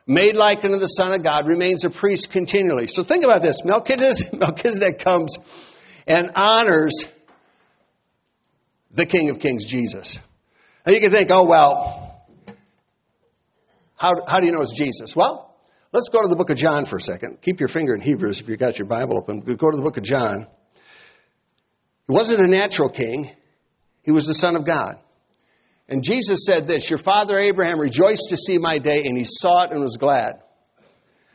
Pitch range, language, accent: 150-205 Hz, English, American